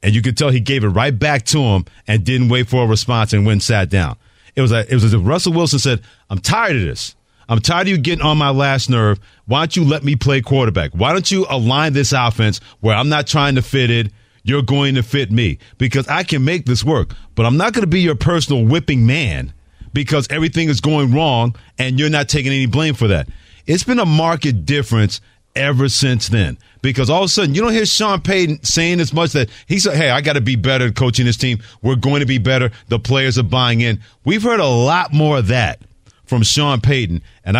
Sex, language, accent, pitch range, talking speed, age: male, English, American, 115-150 Hz, 240 wpm, 40-59